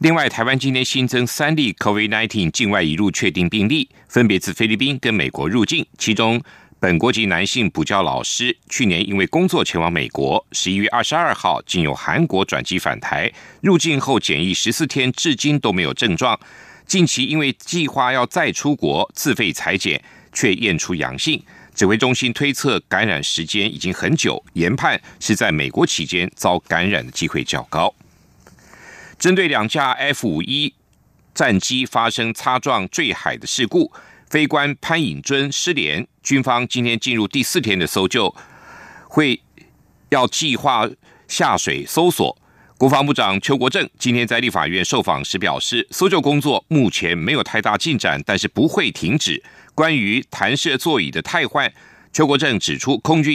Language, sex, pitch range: Chinese, male, 105-145 Hz